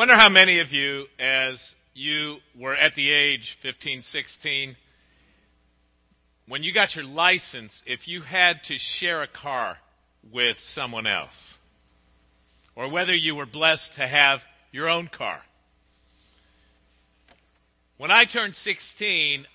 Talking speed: 130 wpm